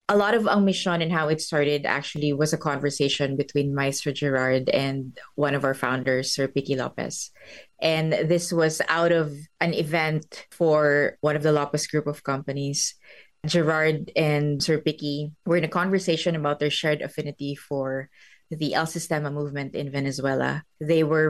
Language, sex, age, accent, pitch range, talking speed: English, female, 20-39, Filipino, 145-175 Hz, 165 wpm